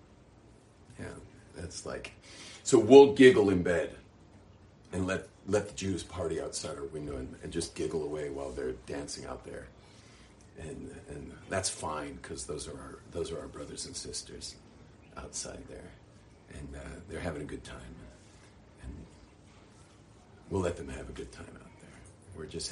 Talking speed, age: 165 wpm, 50-69